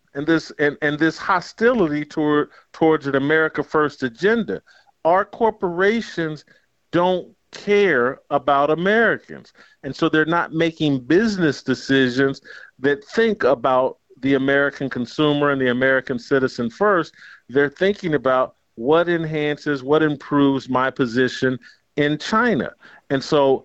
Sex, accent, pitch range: male, American, 140-180 Hz